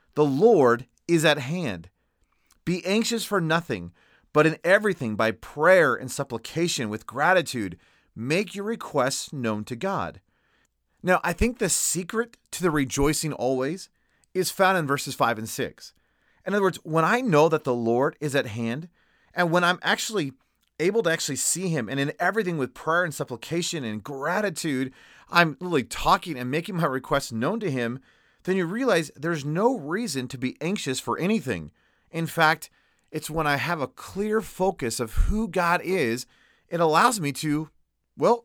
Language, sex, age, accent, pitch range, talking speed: English, male, 30-49, American, 130-185 Hz, 170 wpm